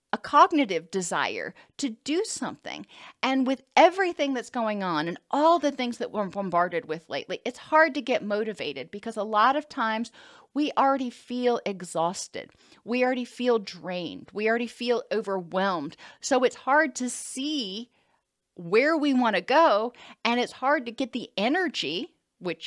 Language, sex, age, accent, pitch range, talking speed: English, female, 40-59, American, 215-285 Hz, 160 wpm